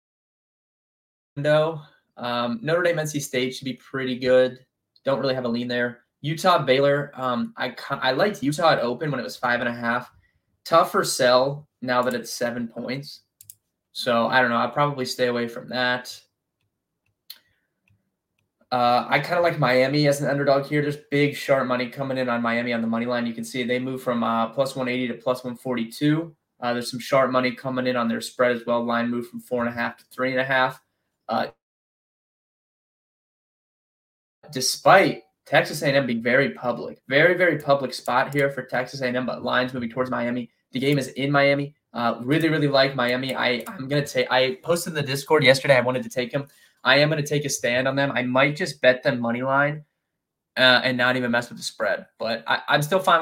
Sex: male